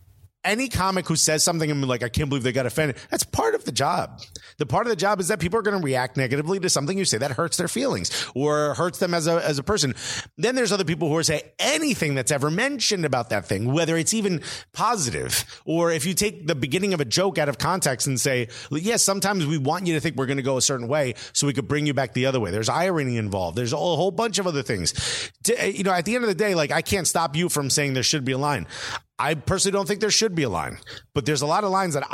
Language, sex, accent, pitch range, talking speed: English, male, American, 135-200 Hz, 280 wpm